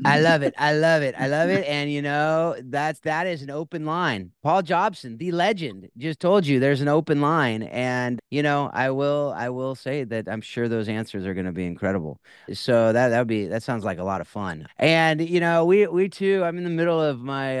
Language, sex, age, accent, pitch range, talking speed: English, male, 30-49, American, 100-135 Hz, 240 wpm